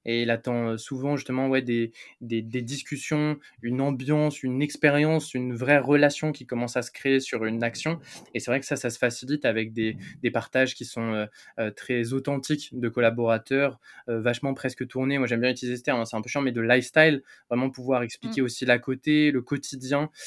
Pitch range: 120-145 Hz